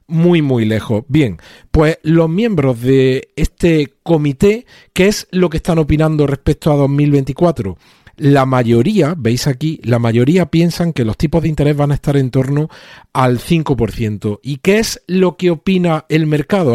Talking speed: 165 wpm